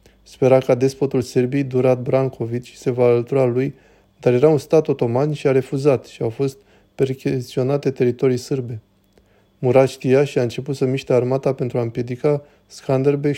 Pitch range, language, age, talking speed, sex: 120-135 Hz, Romanian, 20-39, 160 wpm, male